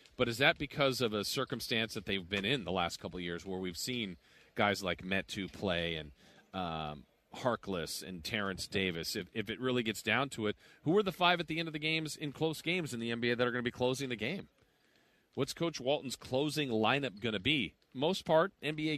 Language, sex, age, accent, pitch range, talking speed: English, male, 40-59, American, 105-135 Hz, 230 wpm